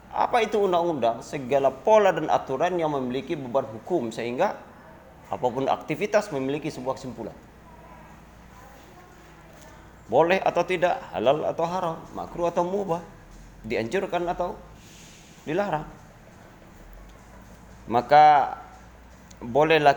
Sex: male